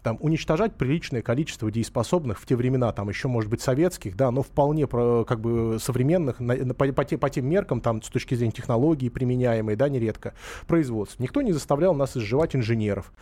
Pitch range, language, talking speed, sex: 125-185 Hz, Russian, 175 wpm, male